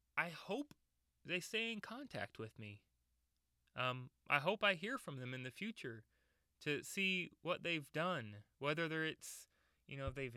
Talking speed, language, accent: 160 wpm, English, American